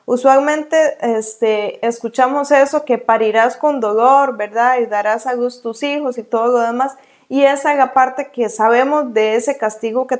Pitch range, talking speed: 230-275 Hz, 175 wpm